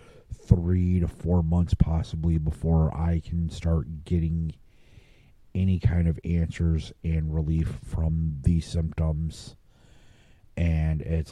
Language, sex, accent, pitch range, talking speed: English, male, American, 80-90 Hz, 110 wpm